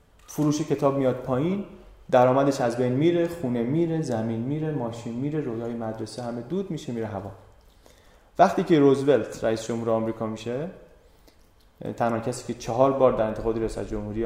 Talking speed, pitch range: 155 wpm, 110-150 Hz